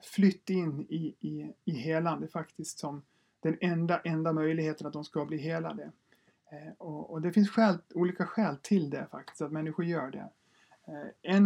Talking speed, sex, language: 175 wpm, male, Swedish